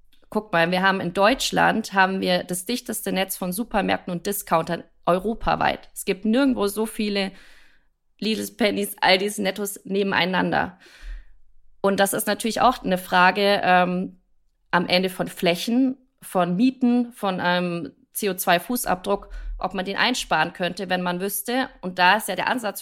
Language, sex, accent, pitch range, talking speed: German, female, German, 175-205 Hz, 155 wpm